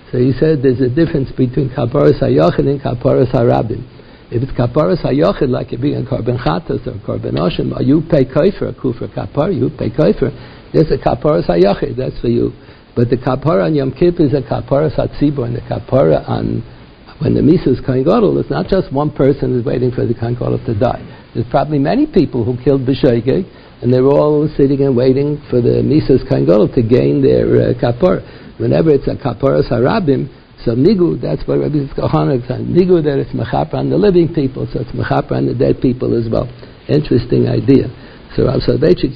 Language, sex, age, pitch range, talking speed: English, male, 60-79, 125-150 Hz, 190 wpm